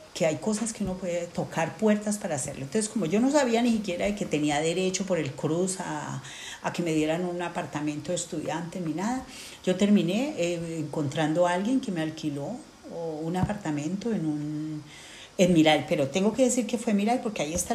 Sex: female